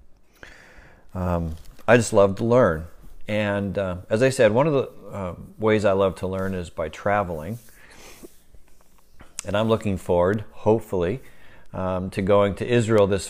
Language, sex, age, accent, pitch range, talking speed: English, male, 50-69, American, 85-110 Hz, 155 wpm